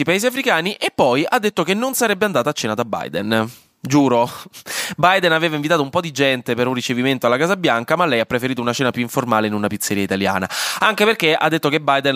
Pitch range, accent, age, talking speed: 110-160 Hz, native, 20-39, 230 wpm